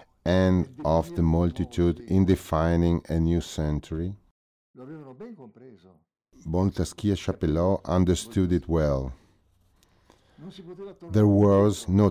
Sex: male